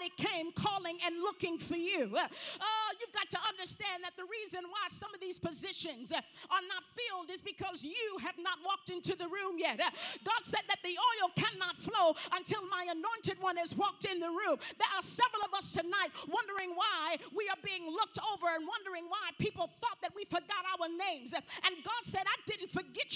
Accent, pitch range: American, 345-400 Hz